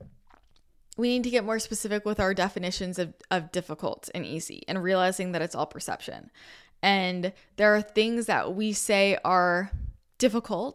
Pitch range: 180-220 Hz